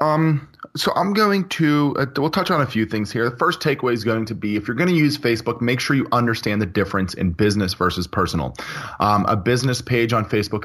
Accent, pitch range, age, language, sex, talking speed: American, 95-115 Hz, 30-49, English, male, 230 wpm